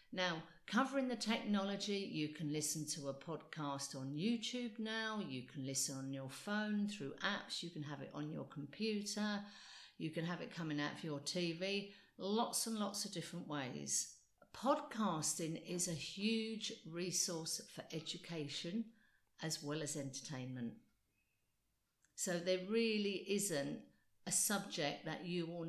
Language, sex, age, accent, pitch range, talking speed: English, female, 50-69, British, 155-200 Hz, 145 wpm